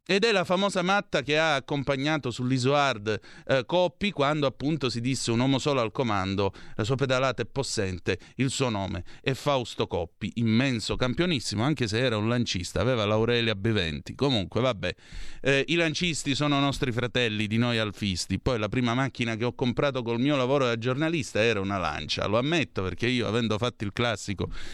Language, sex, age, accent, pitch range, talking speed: Italian, male, 30-49, native, 110-155 Hz, 180 wpm